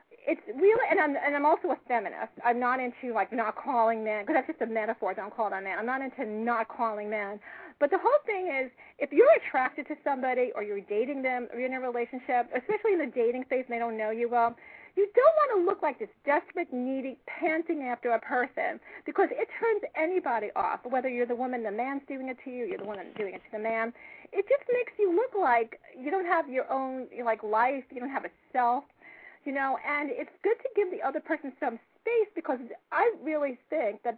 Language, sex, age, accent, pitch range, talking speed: English, female, 40-59, American, 240-325 Hz, 235 wpm